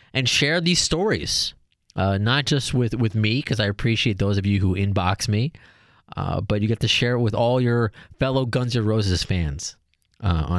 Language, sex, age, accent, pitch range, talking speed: English, male, 30-49, American, 95-130 Hz, 200 wpm